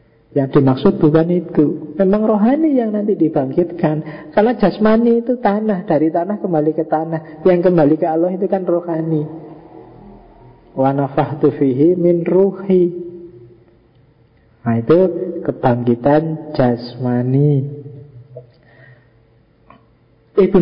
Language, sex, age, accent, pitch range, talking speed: Indonesian, male, 40-59, native, 140-170 Hz, 95 wpm